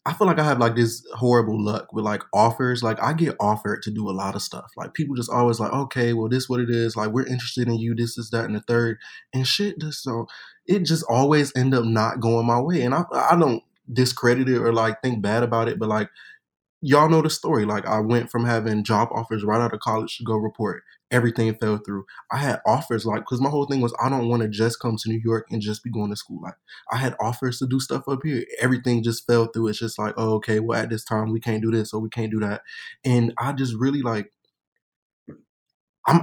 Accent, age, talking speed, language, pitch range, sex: American, 20-39, 255 wpm, English, 110-130 Hz, male